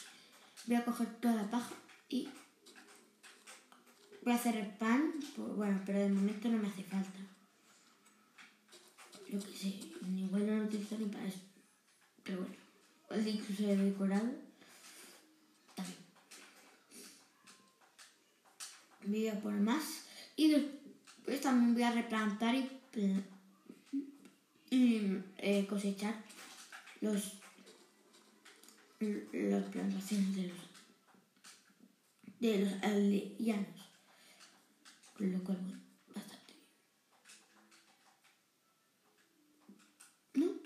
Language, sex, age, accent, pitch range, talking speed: Spanish, female, 20-39, Spanish, 200-270 Hz, 100 wpm